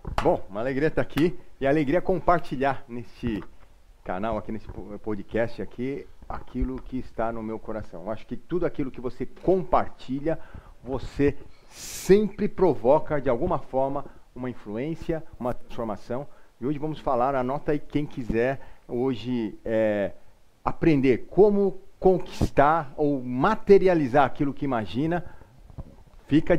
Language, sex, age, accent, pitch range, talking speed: Portuguese, male, 40-59, Brazilian, 120-165 Hz, 130 wpm